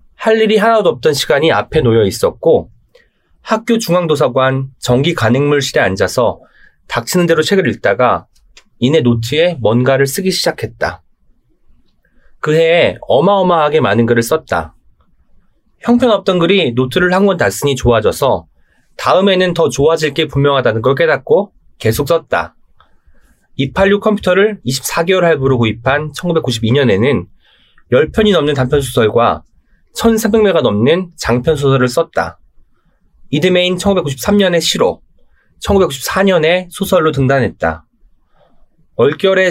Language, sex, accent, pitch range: Korean, male, native, 130-195 Hz